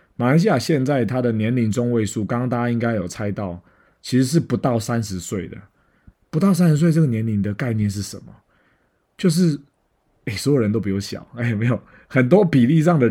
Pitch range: 100-130 Hz